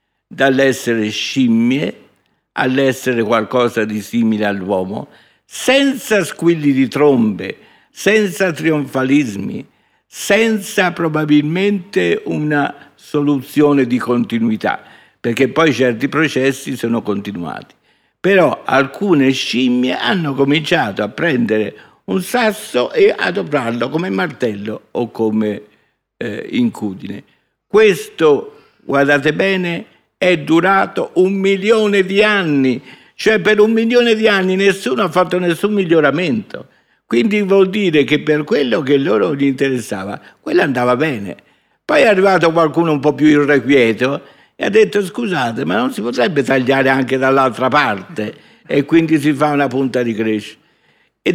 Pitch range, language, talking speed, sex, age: 130-200 Hz, Italian, 125 wpm, male, 50-69